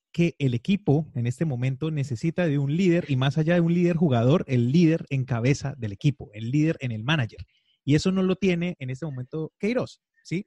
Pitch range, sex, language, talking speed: 125-165 Hz, male, Spanish, 220 wpm